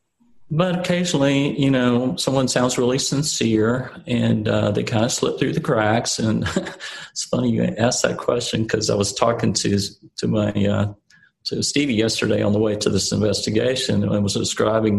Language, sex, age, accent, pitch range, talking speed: English, male, 40-59, American, 105-125 Hz, 180 wpm